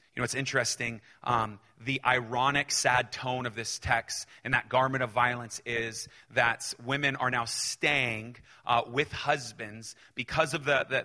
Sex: male